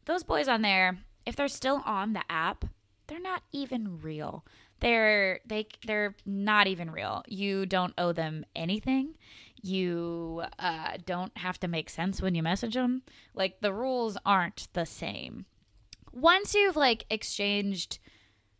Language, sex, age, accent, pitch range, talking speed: English, female, 20-39, American, 170-245 Hz, 150 wpm